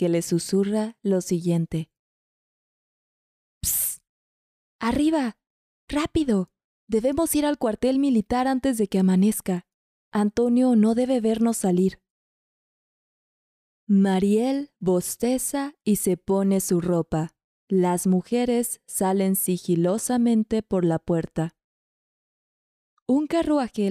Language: Spanish